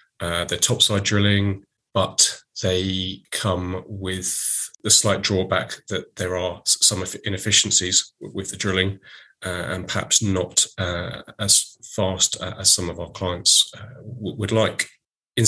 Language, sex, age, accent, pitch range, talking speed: English, male, 30-49, British, 90-105 Hz, 135 wpm